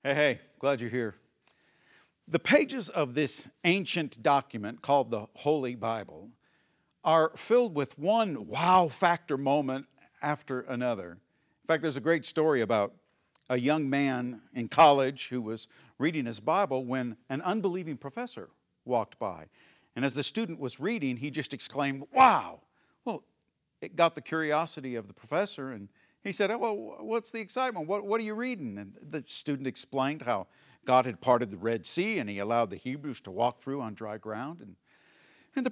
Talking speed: 175 wpm